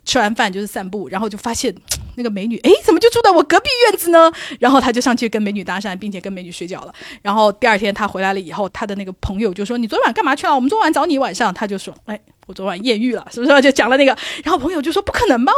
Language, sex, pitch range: Chinese, female, 210-280 Hz